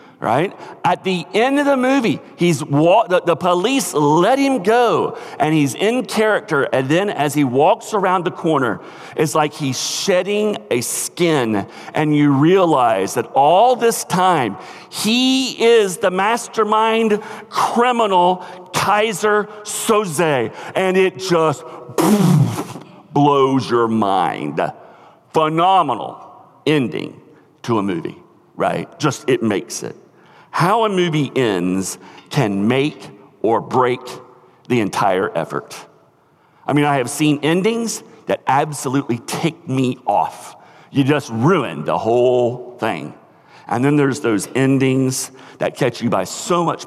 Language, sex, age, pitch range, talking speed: English, male, 40-59, 125-190 Hz, 130 wpm